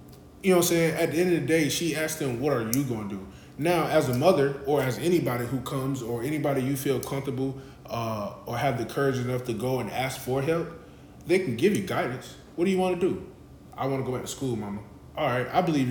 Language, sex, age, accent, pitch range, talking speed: English, male, 20-39, American, 110-140 Hz, 260 wpm